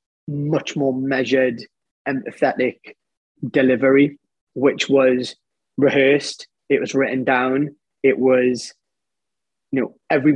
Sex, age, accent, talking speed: male, 20-39, British, 100 wpm